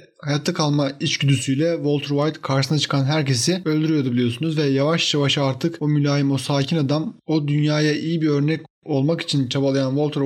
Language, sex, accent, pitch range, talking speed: Turkish, male, native, 135-155 Hz, 165 wpm